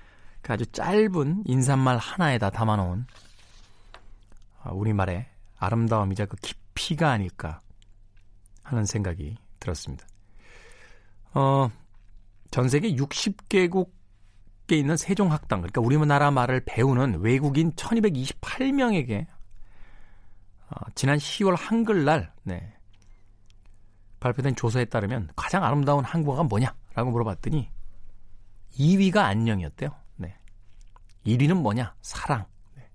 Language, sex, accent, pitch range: Korean, male, native, 100-130 Hz